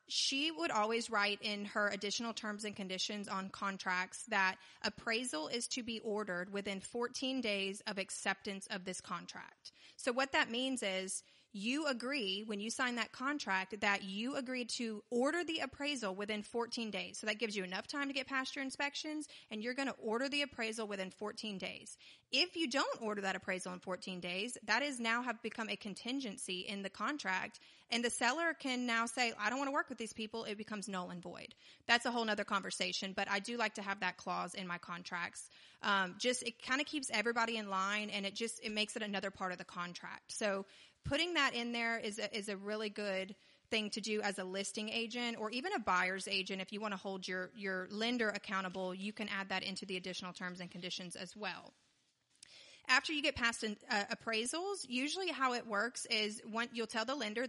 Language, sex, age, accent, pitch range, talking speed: English, female, 30-49, American, 195-245 Hz, 215 wpm